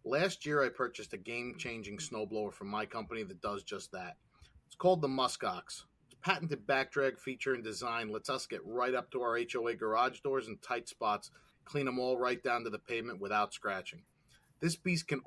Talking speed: 200 wpm